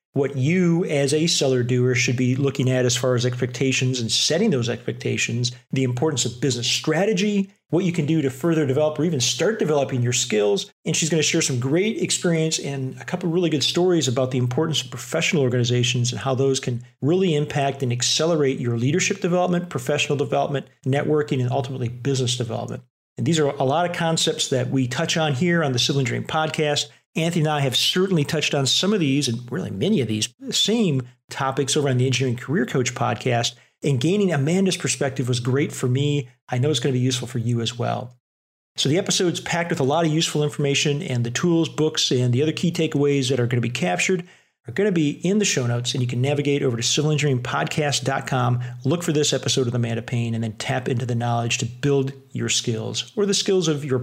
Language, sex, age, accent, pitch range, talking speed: English, male, 40-59, American, 125-160 Hz, 220 wpm